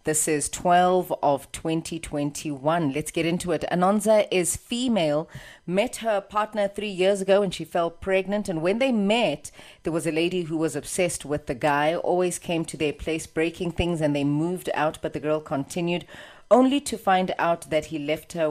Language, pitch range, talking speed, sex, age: English, 155-190 Hz, 190 wpm, female, 30-49